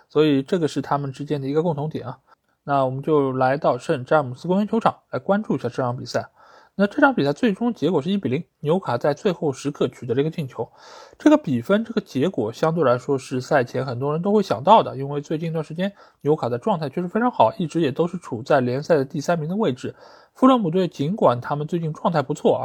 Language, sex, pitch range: Chinese, male, 135-195 Hz